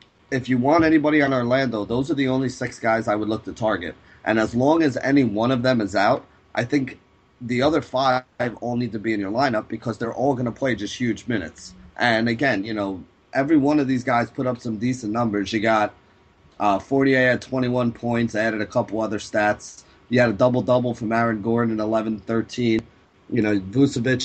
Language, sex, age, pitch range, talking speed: English, male, 30-49, 100-125 Hz, 215 wpm